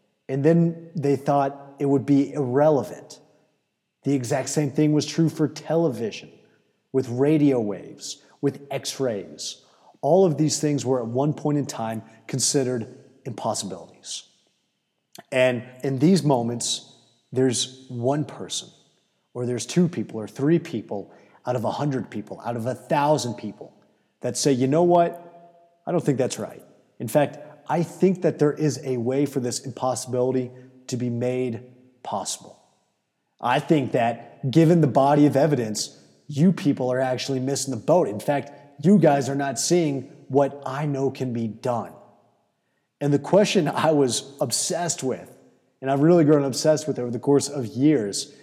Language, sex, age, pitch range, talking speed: English, male, 30-49, 125-150 Hz, 160 wpm